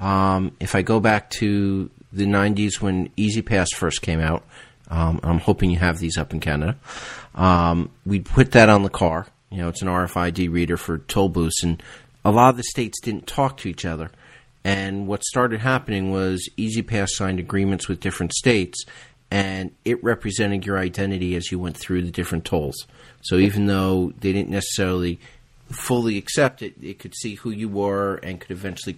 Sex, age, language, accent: male, 40-59, English, American